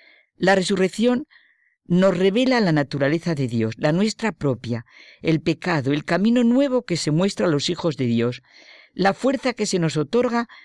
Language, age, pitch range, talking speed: Spanish, 50-69, 135-200 Hz, 170 wpm